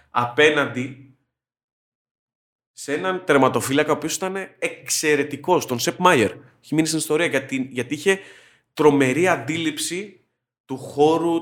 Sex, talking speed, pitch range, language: male, 105 wpm, 115-150 Hz, Greek